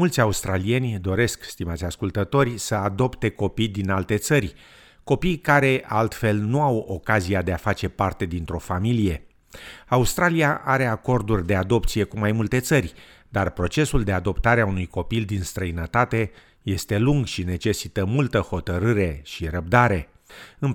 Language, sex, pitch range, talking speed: Romanian, male, 90-115 Hz, 145 wpm